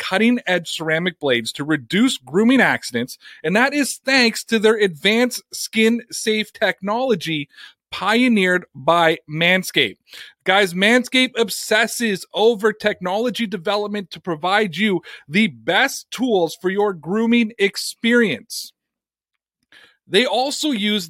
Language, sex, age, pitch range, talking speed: English, male, 30-49, 185-230 Hz, 110 wpm